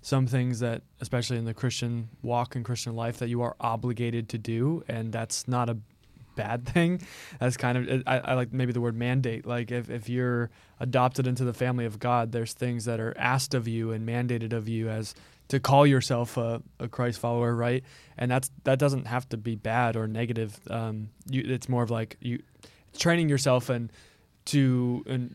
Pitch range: 115-130 Hz